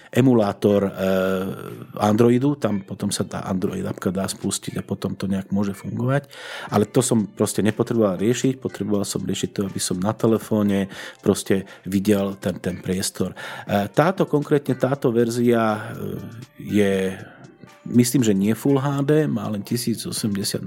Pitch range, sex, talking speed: 100-130 Hz, male, 140 wpm